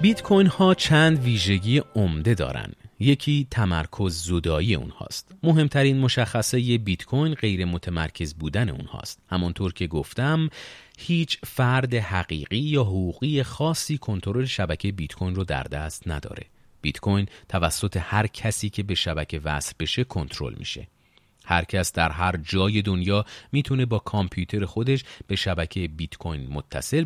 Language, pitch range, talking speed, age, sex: Persian, 85-125 Hz, 135 wpm, 40-59, male